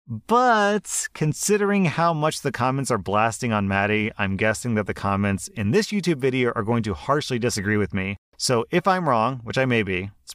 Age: 30-49